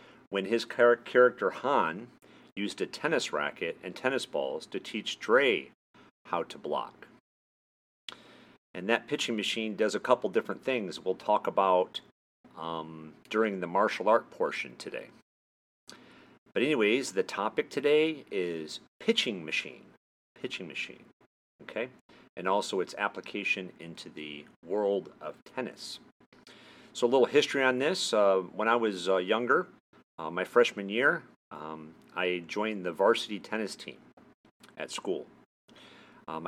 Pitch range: 85-120 Hz